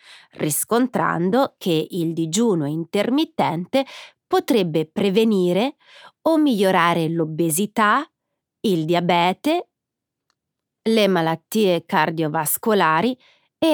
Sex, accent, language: female, native, Italian